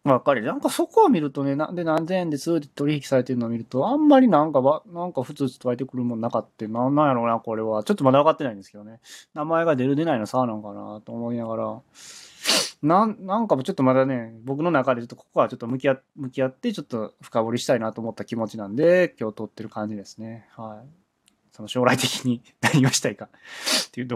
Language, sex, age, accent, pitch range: Japanese, male, 20-39, native, 115-155 Hz